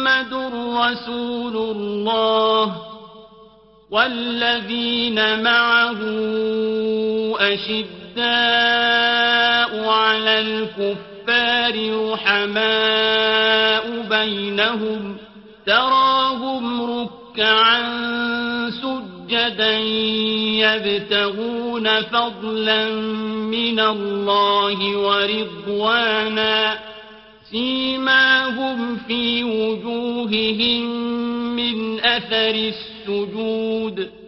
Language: Arabic